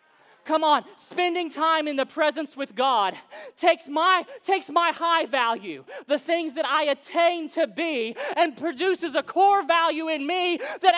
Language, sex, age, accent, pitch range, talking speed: English, male, 20-39, American, 220-335 Hz, 165 wpm